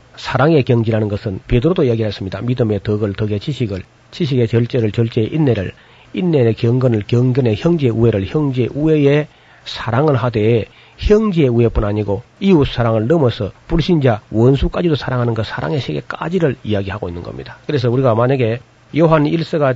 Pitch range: 110-135 Hz